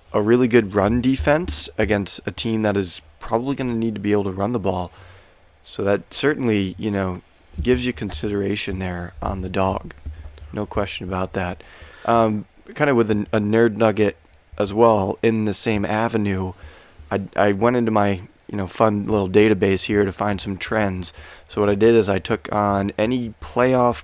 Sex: male